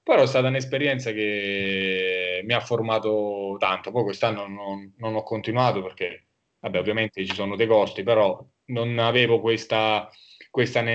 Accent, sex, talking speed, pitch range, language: native, male, 150 wpm, 110-135 Hz, Italian